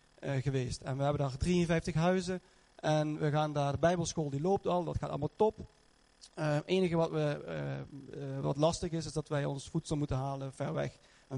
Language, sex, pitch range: Dutch, male, 140-165 Hz